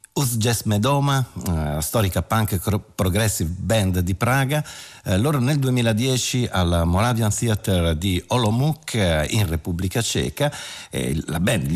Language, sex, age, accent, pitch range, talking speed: Italian, male, 50-69, native, 90-115 Hz, 105 wpm